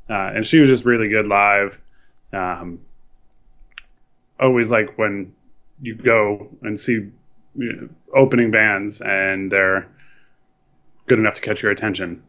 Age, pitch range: 20-39, 100-125 Hz